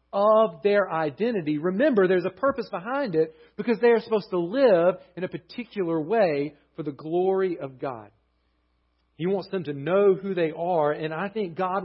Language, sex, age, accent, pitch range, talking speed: English, male, 40-59, American, 150-210 Hz, 180 wpm